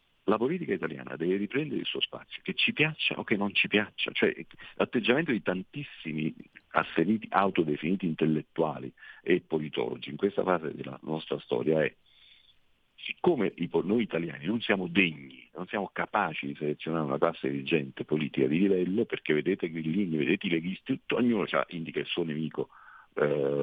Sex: male